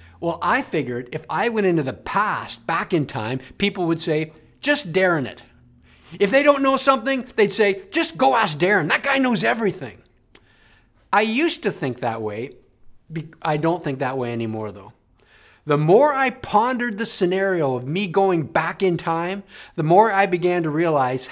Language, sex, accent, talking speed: English, male, American, 180 wpm